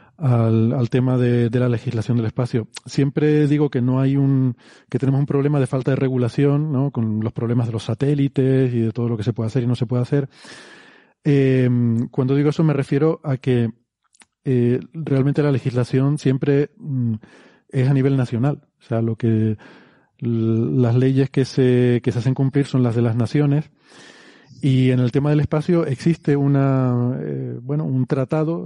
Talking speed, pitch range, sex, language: 190 wpm, 120-145 Hz, male, Spanish